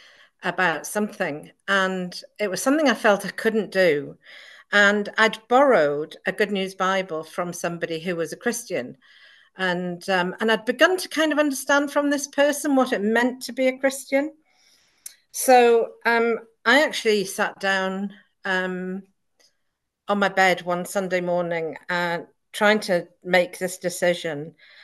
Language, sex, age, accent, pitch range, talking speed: English, female, 50-69, British, 175-230 Hz, 150 wpm